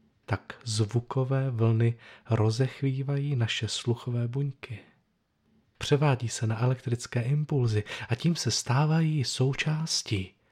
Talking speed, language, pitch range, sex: 95 wpm, Czech, 110-140 Hz, male